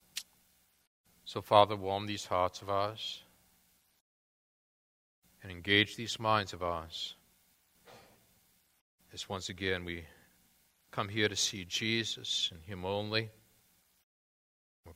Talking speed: 105 wpm